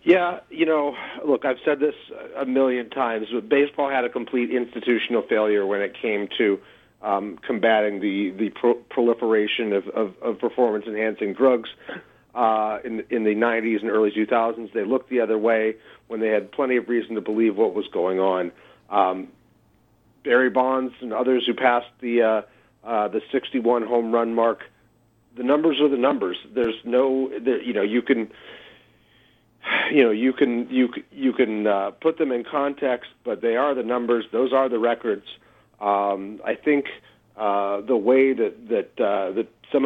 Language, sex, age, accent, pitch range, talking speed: English, male, 40-59, American, 110-135 Hz, 170 wpm